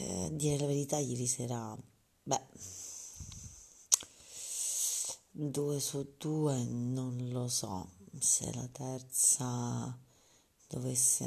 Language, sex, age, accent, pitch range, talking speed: Italian, female, 30-49, native, 120-140 Hz, 85 wpm